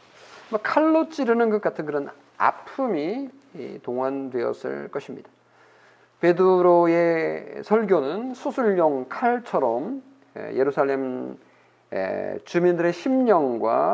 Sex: male